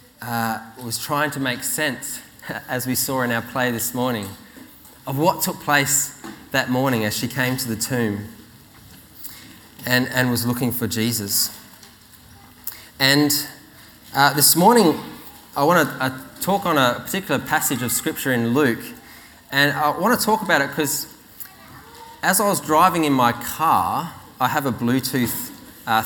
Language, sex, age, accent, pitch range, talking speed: English, male, 20-39, Australian, 115-145 Hz, 155 wpm